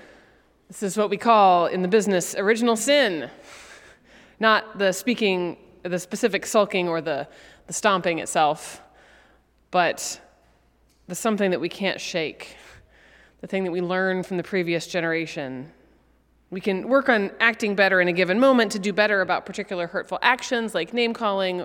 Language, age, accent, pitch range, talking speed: English, 30-49, American, 170-205 Hz, 155 wpm